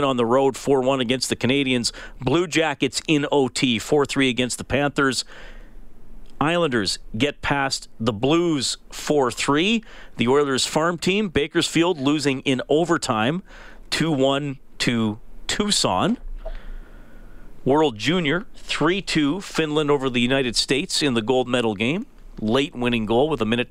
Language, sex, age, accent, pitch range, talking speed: English, male, 40-59, American, 115-145 Hz, 130 wpm